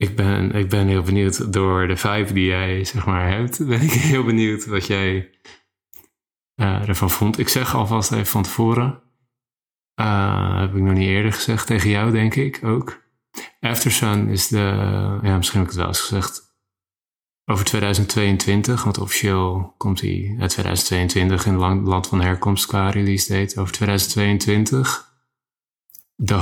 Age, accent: 20-39, Dutch